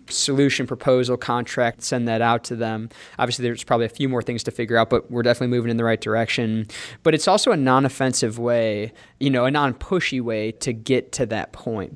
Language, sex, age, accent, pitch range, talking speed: English, male, 20-39, American, 120-135 Hz, 210 wpm